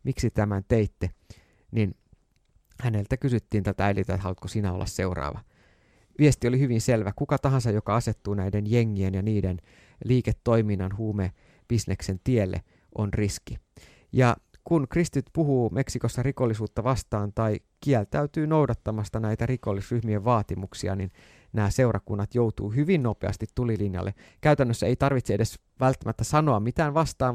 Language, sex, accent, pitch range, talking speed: Finnish, male, native, 100-125 Hz, 125 wpm